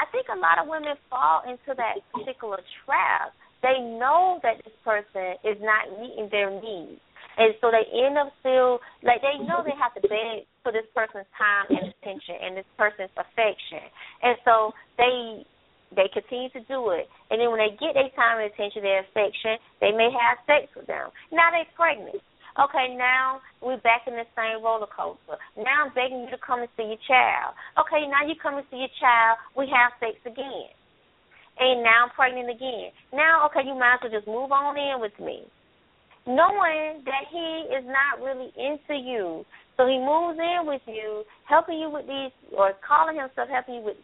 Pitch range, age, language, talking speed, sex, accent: 225-285 Hz, 20-39, English, 195 wpm, female, American